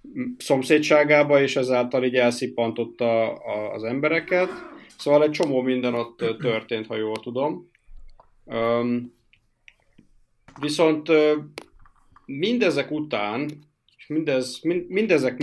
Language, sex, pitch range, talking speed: Hungarian, male, 115-150 Hz, 90 wpm